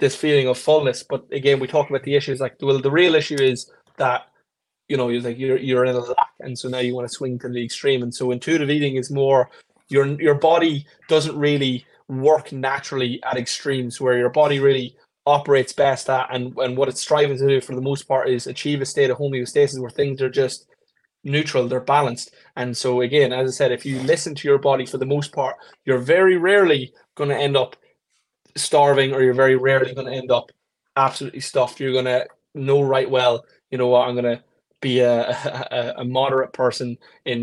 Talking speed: 220 wpm